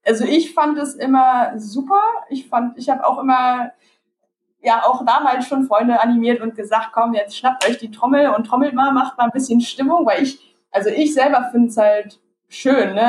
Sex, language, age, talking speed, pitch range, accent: female, German, 20-39, 200 wpm, 210-270 Hz, German